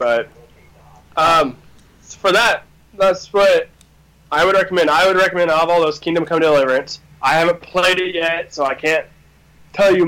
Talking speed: 175 wpm